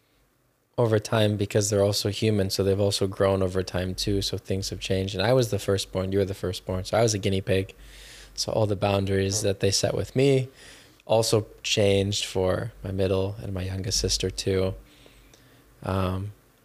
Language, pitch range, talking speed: English, 95-115 Hz, 190 wpm